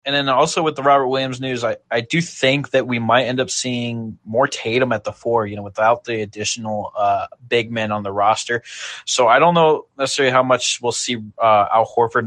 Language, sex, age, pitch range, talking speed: English, male, 20-39, 105-125 Hz, 225 wpm